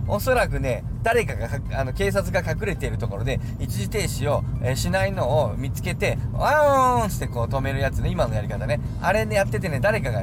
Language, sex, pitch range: Japanese, male, 115-135 Hz